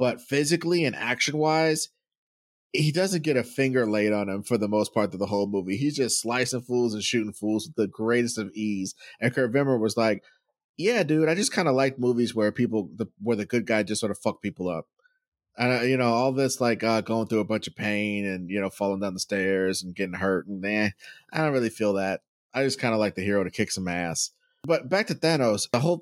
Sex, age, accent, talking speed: male, 30-49, American, 240 wpm